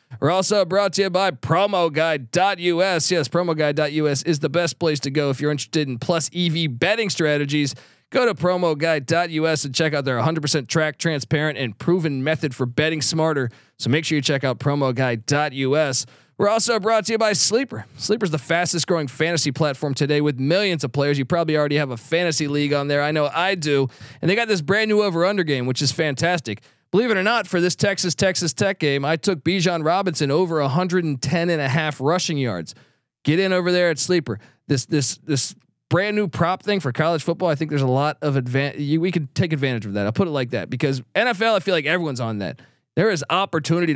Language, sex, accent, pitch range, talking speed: English, male, American, 145-185 Hz, 210 wpm